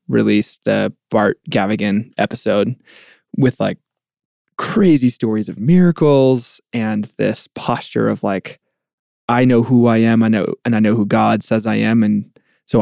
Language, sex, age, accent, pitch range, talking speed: English, male, 20-39, American, 105-125 Hz, 155 wpm